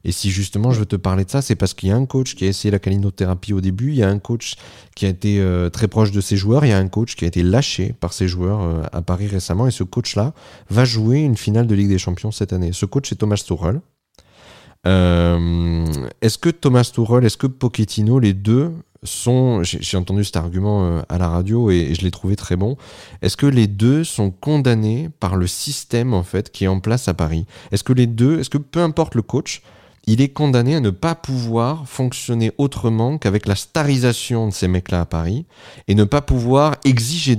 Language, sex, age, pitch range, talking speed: French, male, 30-49, 95-125 Hz, 230 wpm